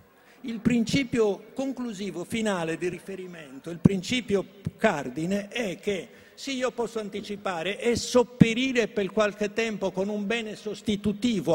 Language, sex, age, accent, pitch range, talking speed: Italian, male, 60-79, native, 175-225 Hz, 125 wpm